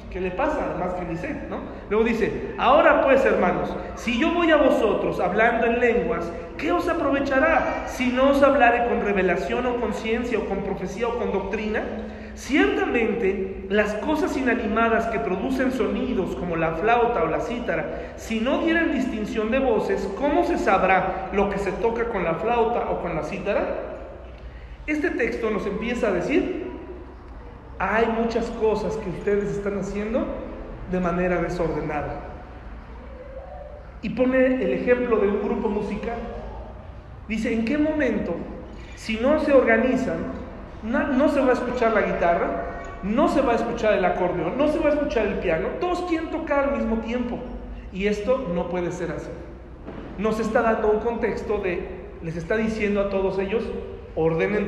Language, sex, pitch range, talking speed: Spanish, male, 190-255 Hz, 165 wpm